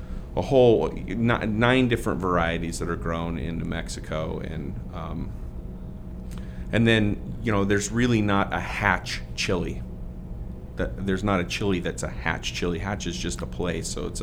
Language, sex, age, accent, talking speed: English, male, 40-59, American, 160 wpm